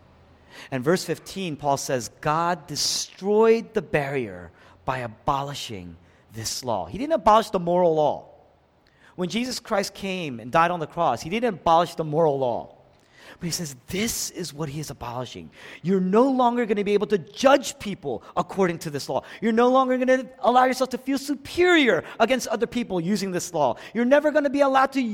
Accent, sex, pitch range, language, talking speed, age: American, male, 140-230 Hz, English, 190 wpm, 40-59